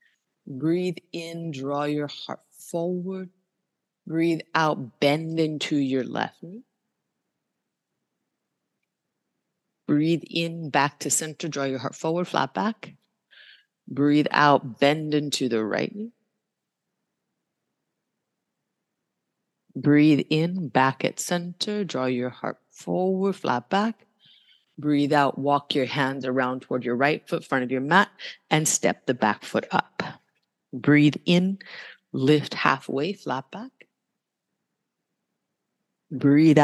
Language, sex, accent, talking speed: English, female, American, 115 wpm